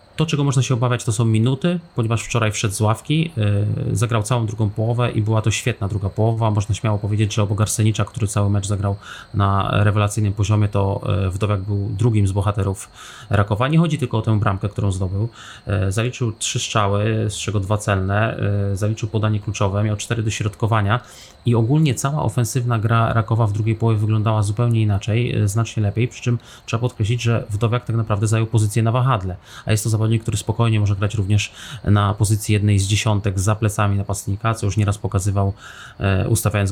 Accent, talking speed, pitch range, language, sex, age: native, 185 wpm, 100-115 Hz, Polish, male, 20-39